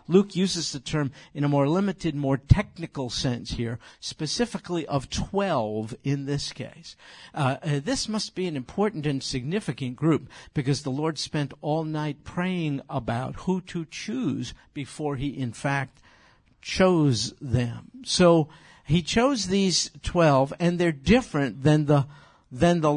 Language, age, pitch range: English, 50-69, 135-175 Hz